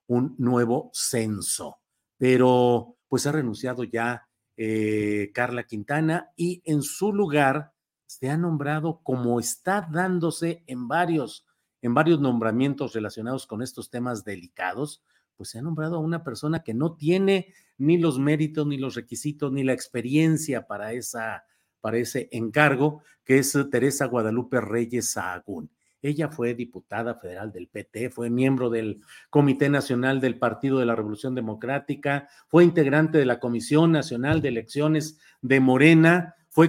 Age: 50-69